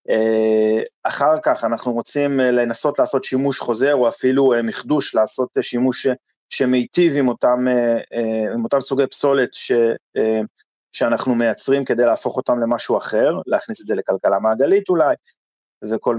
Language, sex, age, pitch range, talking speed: Hebrew, male, 30-49, 120-150 Hz, 130 wpm